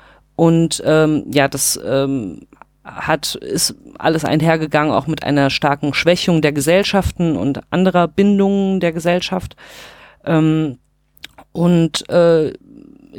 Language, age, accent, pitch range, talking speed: German, 30-49, German, 150-175 Hz, 110 wpm